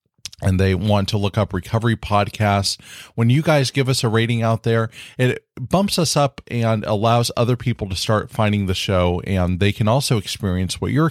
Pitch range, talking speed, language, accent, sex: 95-120 Hz, 200 wpm, English, American, male